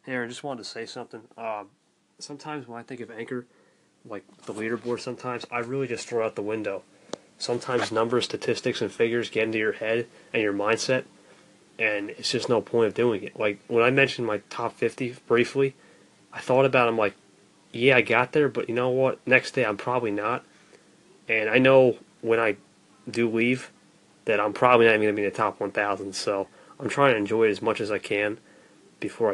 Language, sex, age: English, male, 20-39